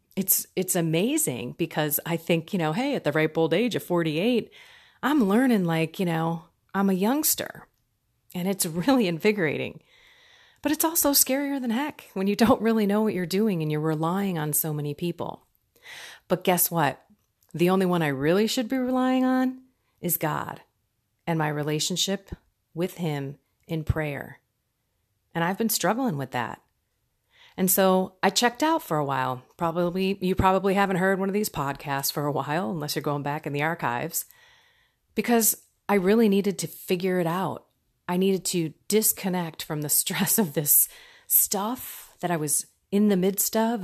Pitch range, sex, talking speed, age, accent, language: 155-215 Hz, female, 175 wpm, 30-49, American, English